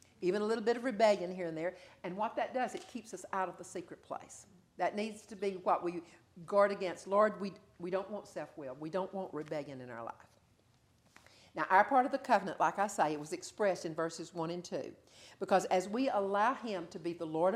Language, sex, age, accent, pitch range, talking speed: English, female, 50-69, American, 170-210 Hz, 230 wpm